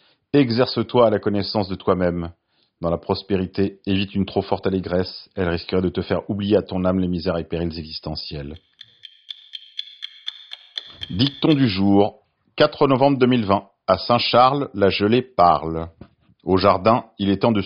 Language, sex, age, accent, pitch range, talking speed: French, male, 40-59, French, 95-120 Hz, 155 wpm